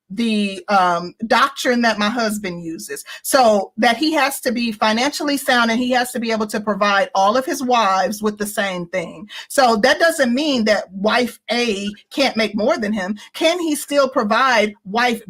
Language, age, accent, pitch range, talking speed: English, 40-59, American, 205-265 Hz, 190 wpm